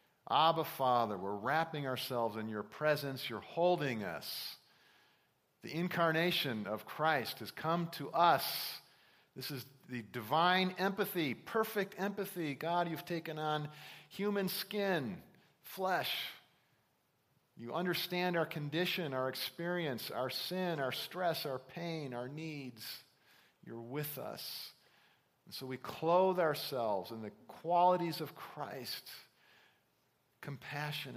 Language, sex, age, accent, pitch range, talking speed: English, male, 50-69, American, 130-170 Hz, 115 wpm